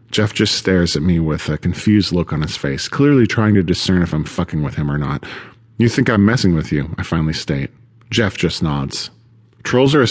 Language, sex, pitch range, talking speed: English, male, 90-115 Hz, 225 wpm